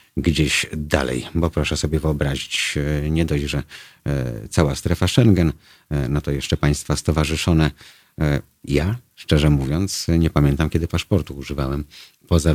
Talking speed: 125 wpm